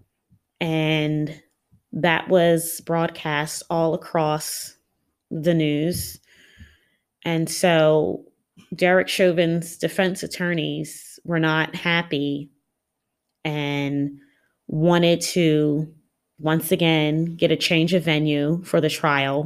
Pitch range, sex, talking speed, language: 150-175 Hz, female, 95 wpm, English